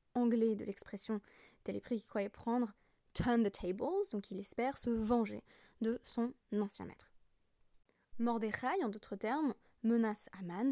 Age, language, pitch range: 20-39, French, 195-240 Hz